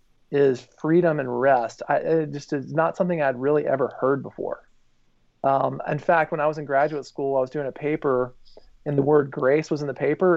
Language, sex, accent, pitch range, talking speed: English, male, American, 125-155 Hz, 210 wpm